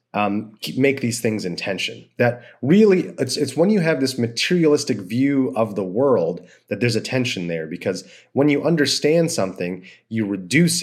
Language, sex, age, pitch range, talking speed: English, male, 30-49, 110-140 Hz, 170 wpm